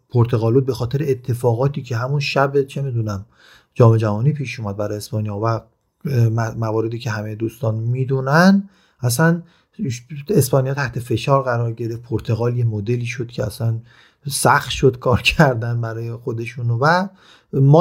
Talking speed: 140 wpm